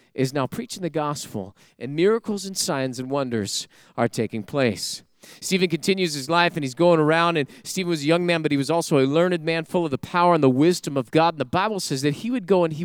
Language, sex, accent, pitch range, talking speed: English, male, American, 160-220 Hz, 250 wpm